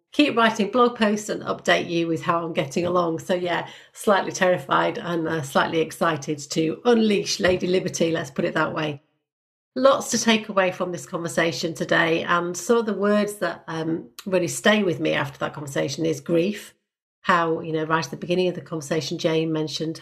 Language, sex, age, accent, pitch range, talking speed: English, female, 40-59, British, 160-190 Hz, 200 wpm